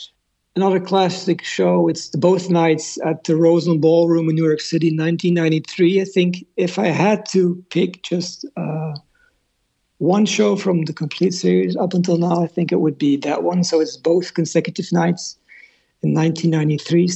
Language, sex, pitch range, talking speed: English, male, 155-180 Hz, 165 wpm